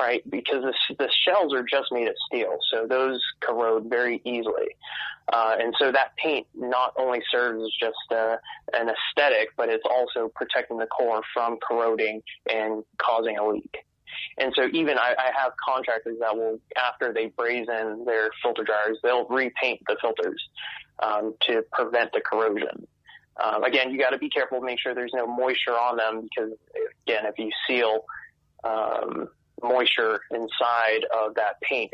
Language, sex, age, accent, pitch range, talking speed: English, male, 20-39, American, 110-125 Hz, 165 wpm